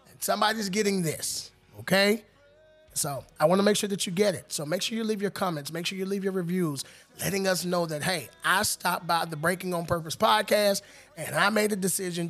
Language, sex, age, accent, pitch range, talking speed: English, male, 30-49, American, 165-205 Hz, 220 wpm